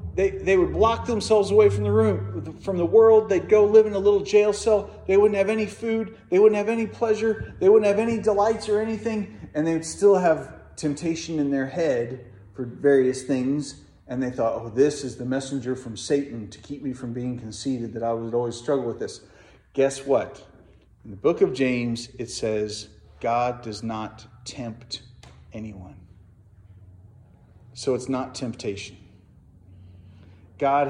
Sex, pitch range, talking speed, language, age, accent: male, 115-190 Hz, 175 wpm, English, 40-59, American